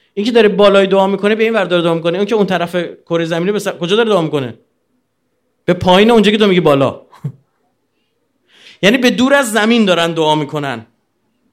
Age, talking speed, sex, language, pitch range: 30-49, 185 wpm, male, Persian, 135-210 Hz